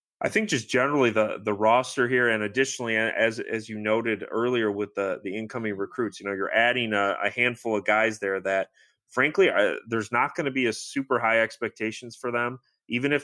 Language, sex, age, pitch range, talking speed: English, male, 30-49, 100-120 Hz, 210 wpm